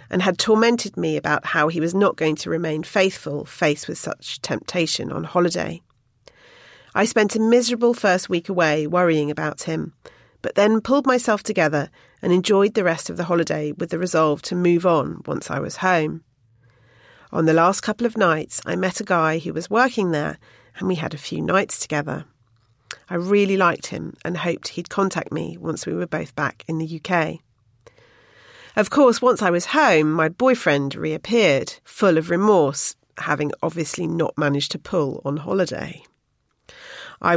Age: 40-59